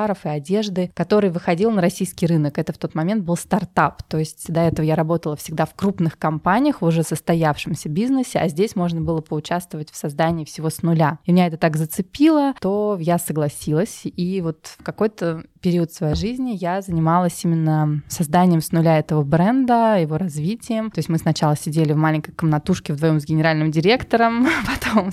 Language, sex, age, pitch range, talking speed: Russian, female, 20-39, 155-190 Hz, 175 wpm